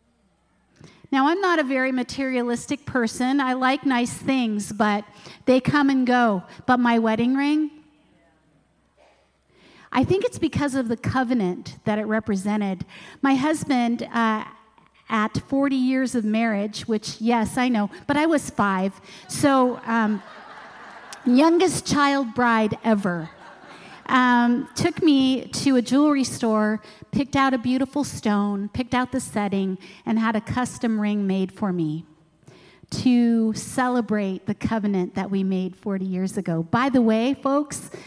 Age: 40-59